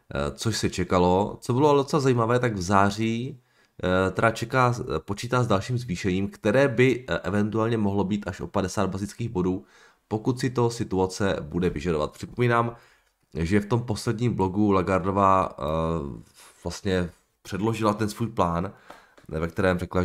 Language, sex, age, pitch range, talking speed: Czech, male, 20-39, 85-110 Hz, 135 wpm